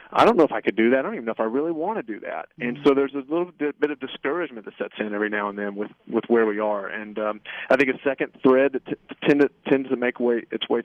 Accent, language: American, English